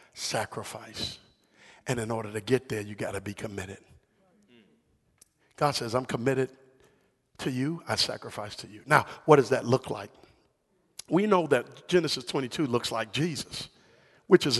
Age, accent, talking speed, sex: 50-69, American, 155 wpm, male